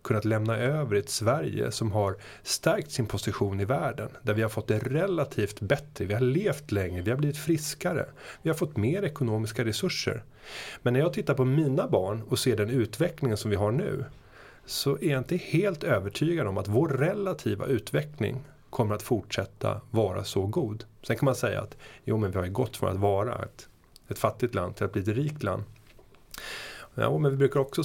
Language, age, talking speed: Swedish, 30-49, 200 wpm